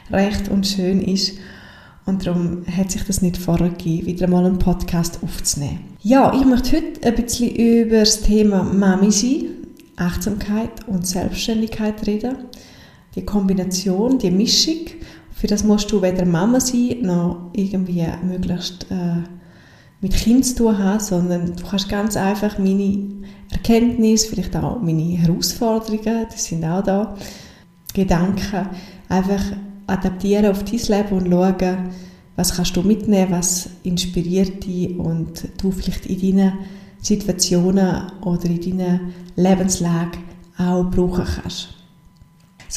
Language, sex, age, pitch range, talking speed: German, female, 20-39, 180-215 Hz, 135 wpm